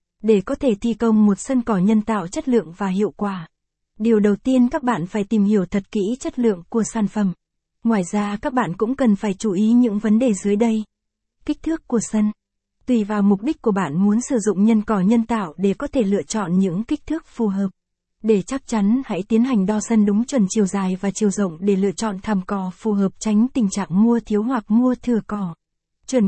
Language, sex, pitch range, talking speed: Vietnamese, female, 200-235 Hz, 235 wpm